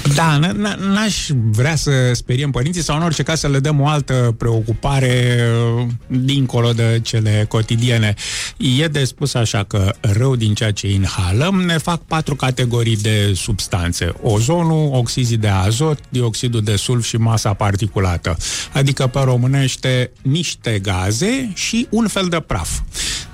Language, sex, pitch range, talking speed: Romanian, male, 105-145 Hz, 145 wpm